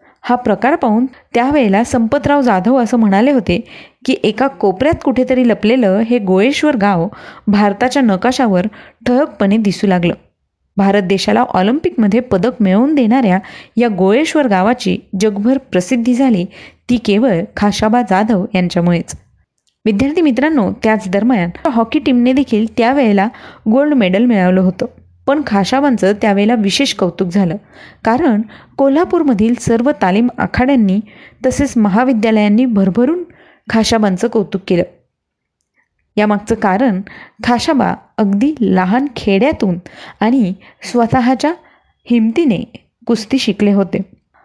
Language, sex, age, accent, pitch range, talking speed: Marathi, female, 30-49, native, 200-255 Hz, 110 wpm